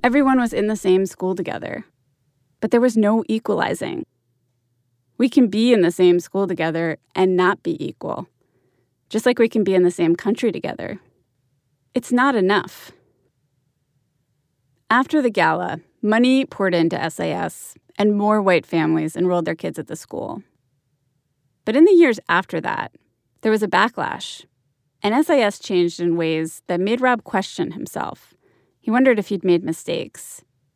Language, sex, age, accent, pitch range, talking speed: English, female, 20-39, American, 145-230 Hz, 155 wpm